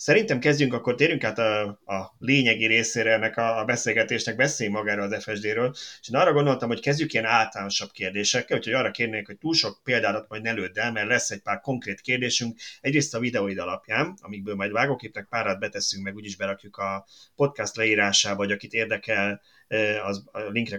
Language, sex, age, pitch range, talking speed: Hungarian, male, 30-49, 100-125 Hz, 180 wpm